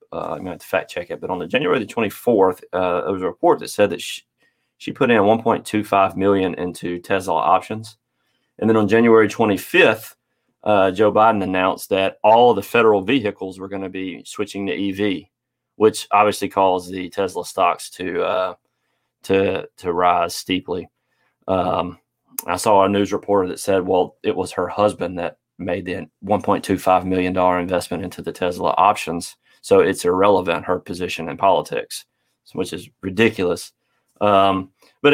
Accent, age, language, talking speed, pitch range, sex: American, 30-49, English, 180 wpm, 95-110 Hz, male